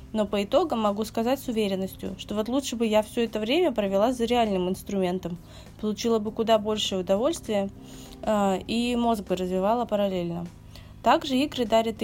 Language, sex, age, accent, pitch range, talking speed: Russian, female, 20-39, native, 210-250 Hz, 165 wpm